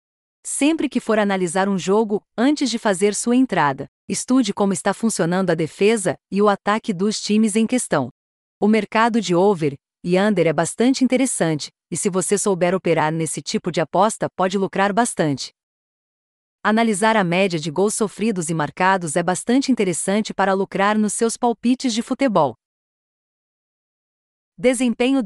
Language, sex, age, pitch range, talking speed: Portuguese, female, 40-59, 180-230 Hz, 150 wpm